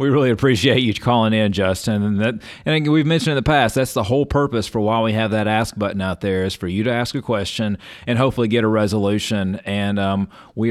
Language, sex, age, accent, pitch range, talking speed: English, male, 30-49, American, 100-120 Hz, 235 wpm